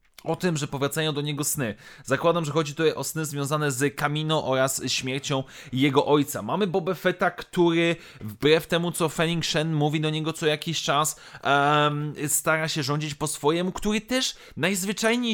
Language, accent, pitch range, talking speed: Polish, native, 150-200 Hz, 170 wpm